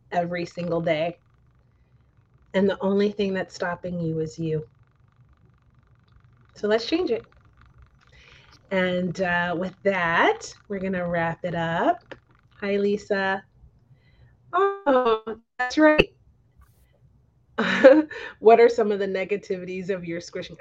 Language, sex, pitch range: English, female, 170-205 Hz